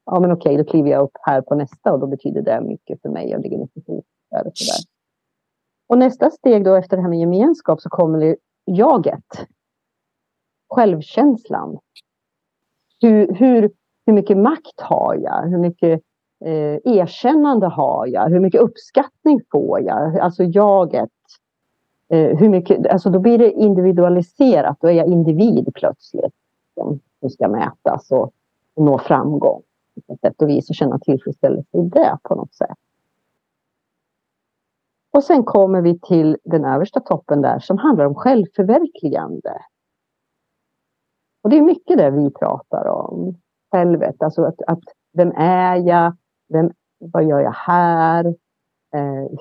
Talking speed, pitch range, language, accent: 145 wpm, 150-200 Hz, Swedish, native